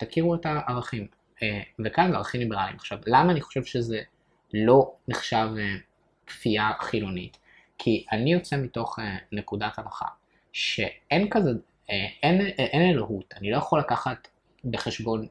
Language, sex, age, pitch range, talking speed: Hebrew, male, 20-39, 105-145 Hz, 120 wpm